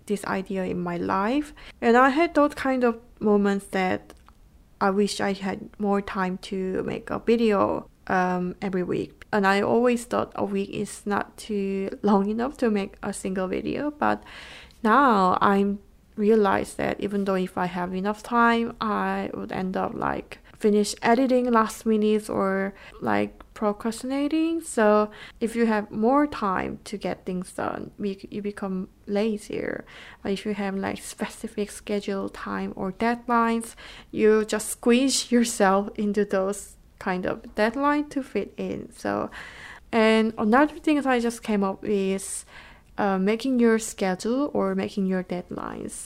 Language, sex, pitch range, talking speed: English, female, 195-235 Hz, 155 wpm